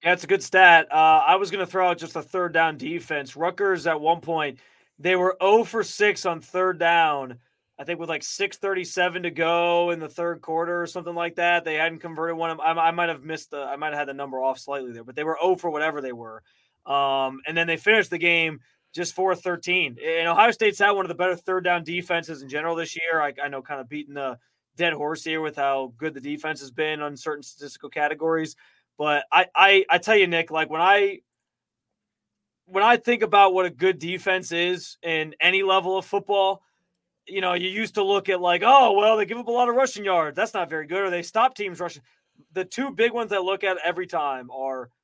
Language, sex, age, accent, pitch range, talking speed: English, male, 20-39, American, 155-190 Hz, 240 wpm